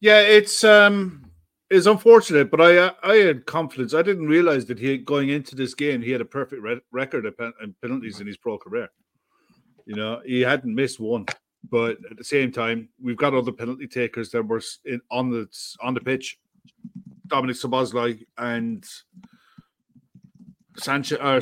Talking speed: 170 wpm